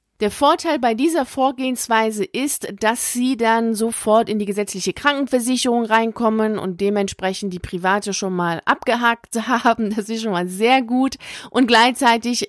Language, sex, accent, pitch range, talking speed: German, female, German, 195-240 Hz, 150 wpm